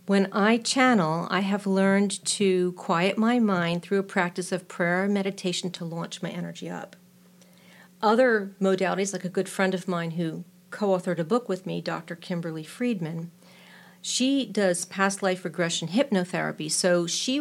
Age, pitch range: 40-59, 175-195 Hz